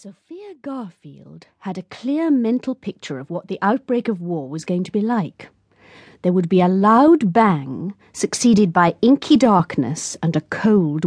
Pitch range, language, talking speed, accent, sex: 160-230 Hz, English, 170 wpm, British, female